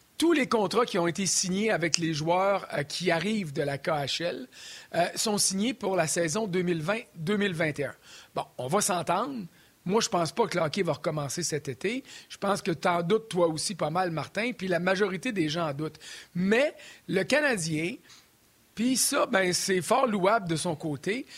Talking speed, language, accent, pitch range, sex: 195 wpm, French, Canadian, 165-220 Hz, male